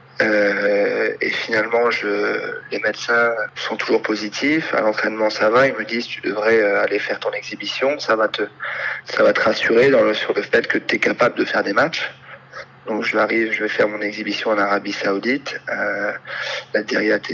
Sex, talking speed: male, 185 wpm